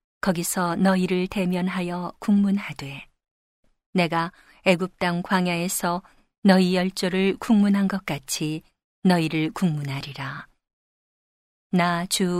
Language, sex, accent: Korean, female, native